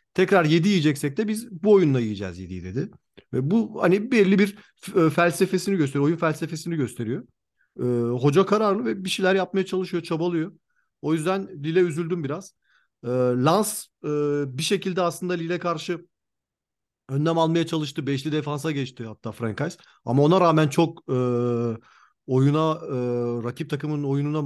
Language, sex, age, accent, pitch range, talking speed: Turkish, male, 40-59, native, 125-170 Hz, 145 wpm